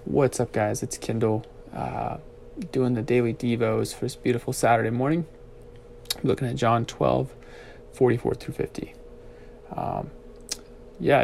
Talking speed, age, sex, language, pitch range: 140 wpm, 20-39, male, English, 105-125 Hz